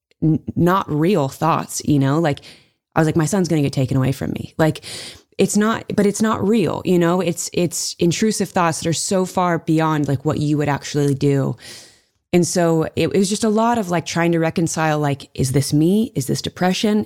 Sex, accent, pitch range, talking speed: female, American, 140-165 Hz, 220 wpm